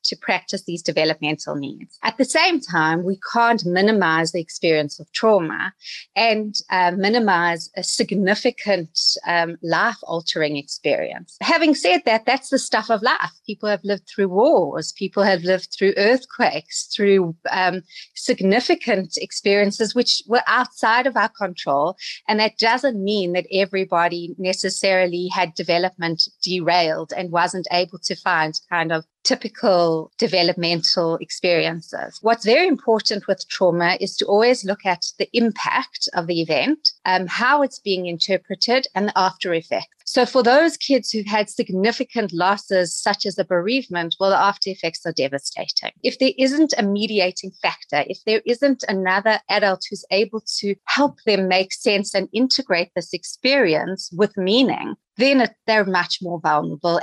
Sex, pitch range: female, 175-225 Hz